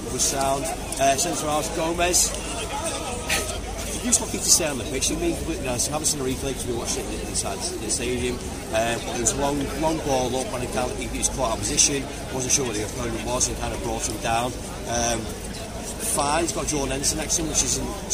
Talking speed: 215 wpm